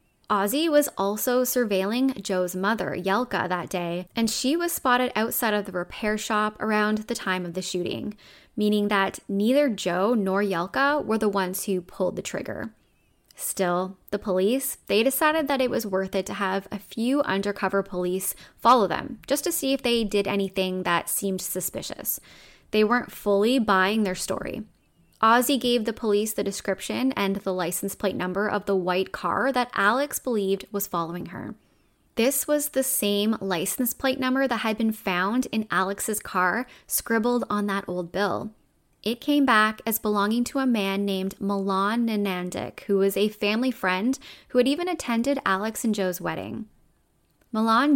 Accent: American